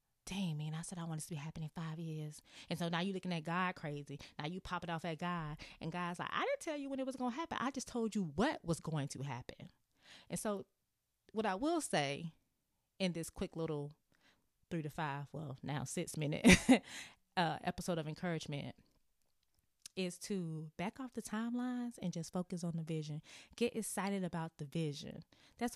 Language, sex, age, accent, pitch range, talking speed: English, female, 20-39, American, 155-205 Hz, 205 wpm